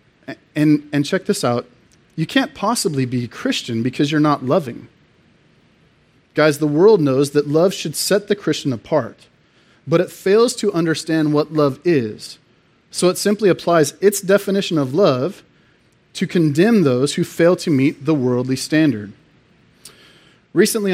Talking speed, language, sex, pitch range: 150 wpm, English, male, 140-180 Hz